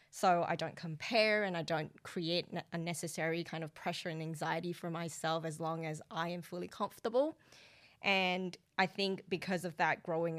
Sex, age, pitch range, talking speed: female, 10-29, 160-180 Hz, 175 wpm